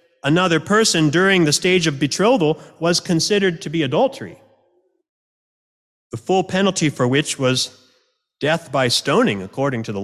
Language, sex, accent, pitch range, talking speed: English, male, American, 145-200 Hz, 145 wpm